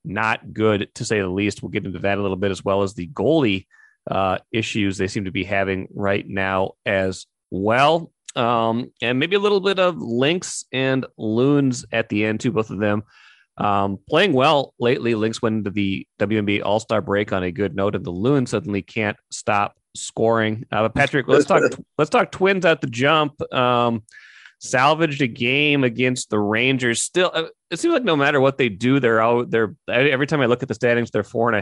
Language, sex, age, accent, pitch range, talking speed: English, male, 30-49, American, 100-135 Hz, 205 wpm